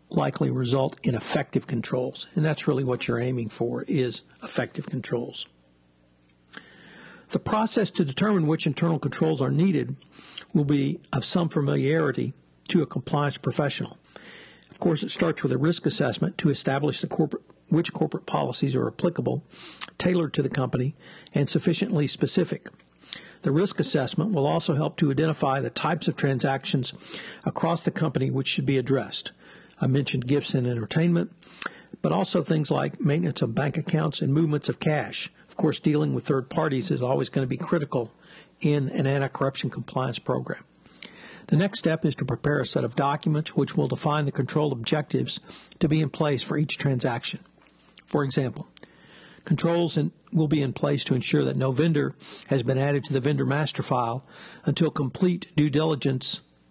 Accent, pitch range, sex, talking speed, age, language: American, 135-165 Hz, male, 165 wpm, 60-79, English